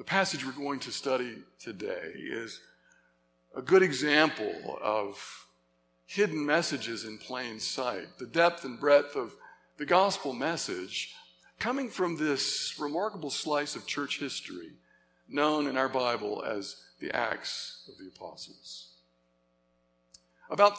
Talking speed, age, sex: 125 wpm, 60-79, male